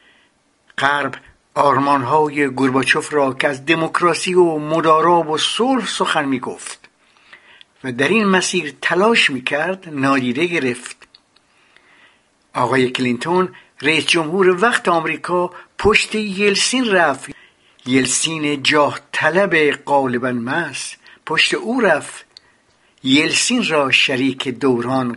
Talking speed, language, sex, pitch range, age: 100 wpm, Persian, male, 135-190 Hz, 60-79